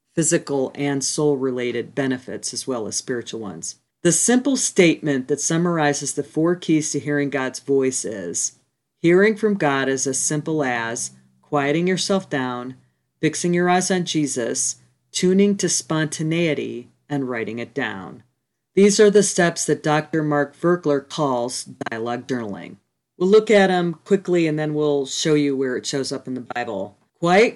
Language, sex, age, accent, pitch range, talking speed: English, female, 40-59, American, 135-165 Hz, 160 wpm